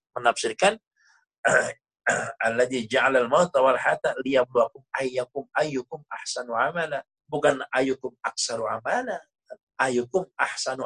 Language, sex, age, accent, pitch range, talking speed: Indonesian, male, 50-69, native, 120-165 Hz, 90 wpm